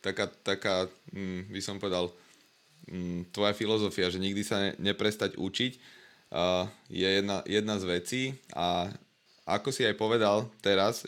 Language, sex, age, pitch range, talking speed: Slovak, male, 20-39, 100-110 Hz, 125 wpm